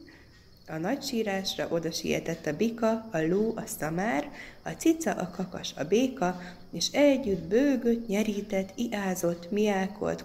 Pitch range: 175-235 Hz